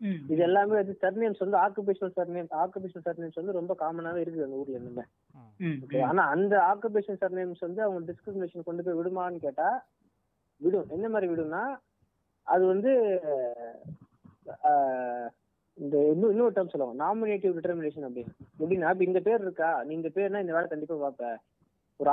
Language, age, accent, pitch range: Tamil, 20-39, native, 155-195 Hz